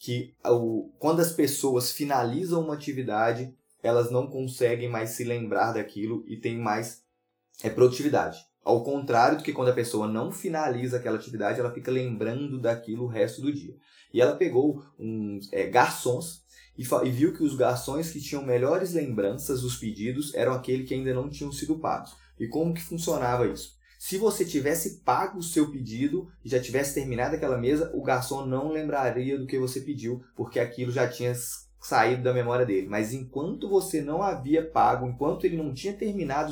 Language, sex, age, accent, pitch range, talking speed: Portuguese, male, 20-39, Brazilian, 115-145 Hz, 175 wpm